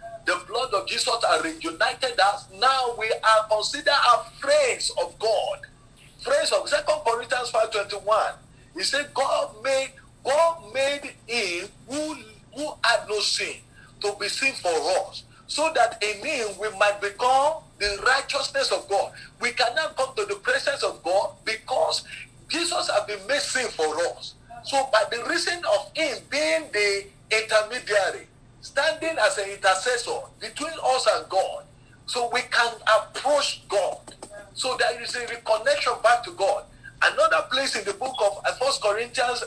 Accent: Nigerian